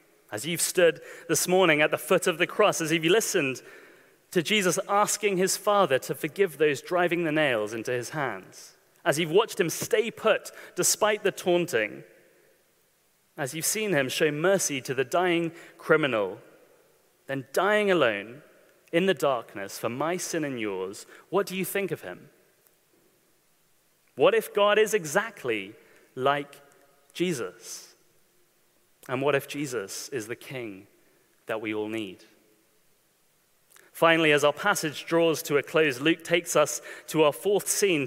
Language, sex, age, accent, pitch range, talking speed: English, male, 30-49, British, 155-210 Hz, 155 wpm